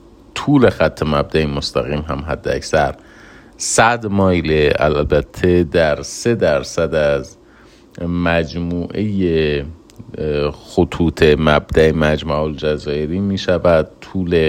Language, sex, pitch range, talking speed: Persian, male, 75-90 Hz, 85 wpm